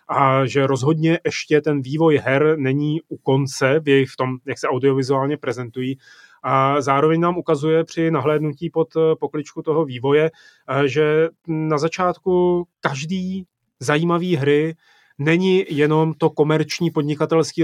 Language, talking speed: Czech, 125 wpm